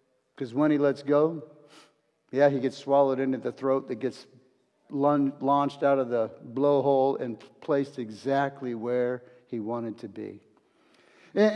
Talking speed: 145 wpm